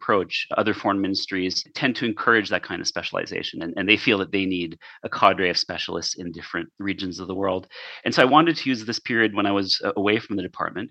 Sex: male